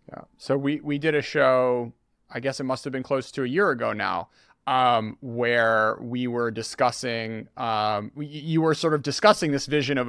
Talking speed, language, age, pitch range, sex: 200 wpm, English, 30-49, 120-165 Hz, male